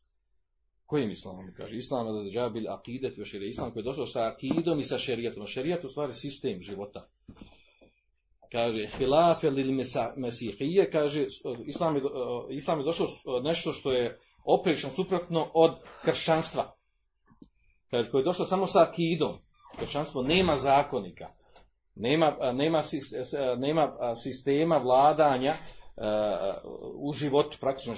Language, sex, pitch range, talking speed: Croatian, male, 110-155 Hz, 120 wpm